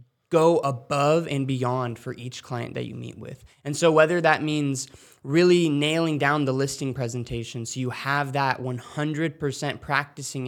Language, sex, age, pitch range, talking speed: English, male, 20-39, 125-150 Hz, 160 wpm